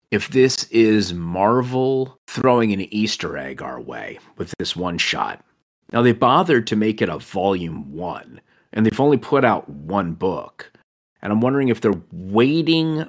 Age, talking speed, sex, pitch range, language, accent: 30-49, 165 wpm, male, 95-125 Hz, English, American